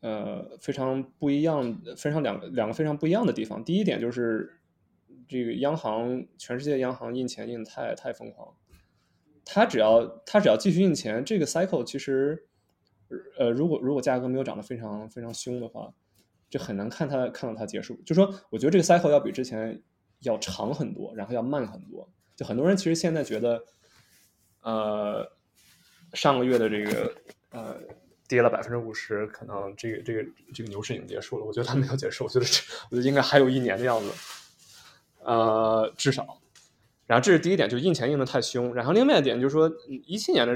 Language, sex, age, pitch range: Chinese, male, 20-39, 115-150 Hz